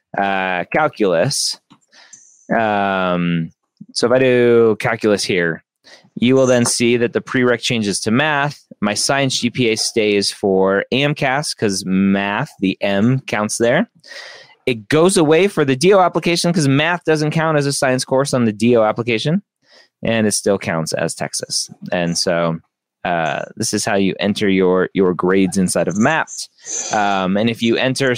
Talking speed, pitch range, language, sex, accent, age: 160 wpm, 100-135 Hz, English, male, American, 20-39